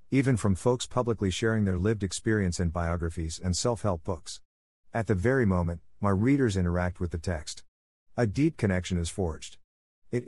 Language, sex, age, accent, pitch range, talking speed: English, male, 50-69, American, 90-120 Hz, 170 wpm